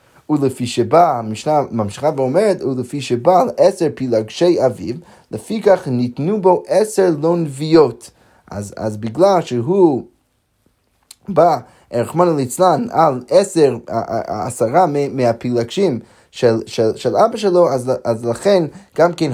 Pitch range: 120-170 Hz